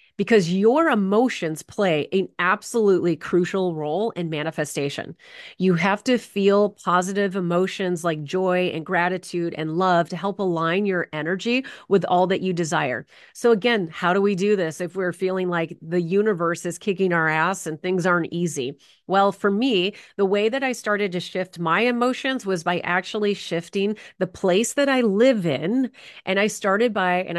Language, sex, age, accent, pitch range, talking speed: English, female, 30-49, American, 170-200 Hz, 175 wpm